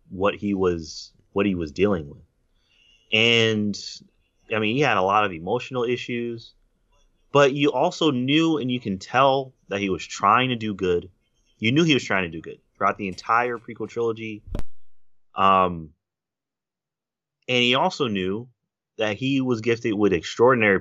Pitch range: 90-120 Hz